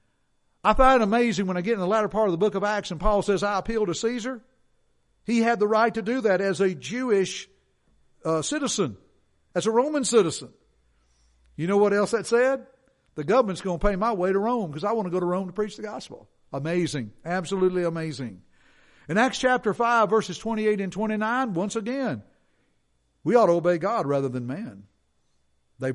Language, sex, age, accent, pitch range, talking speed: English, male, 60-79, American, 145-215 Hz, 200 wpm